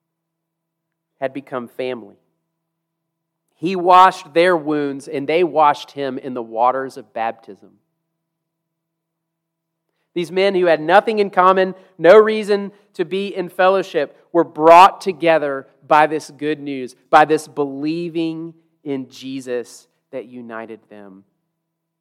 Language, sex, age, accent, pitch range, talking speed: English, male, 30-49, American, 140-170 Hz, 120 wpm